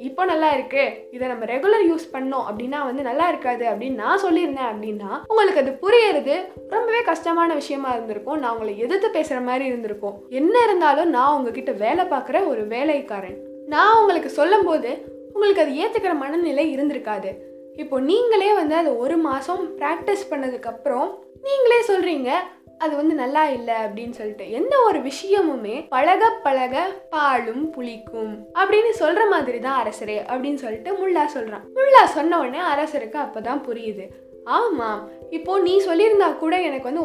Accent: native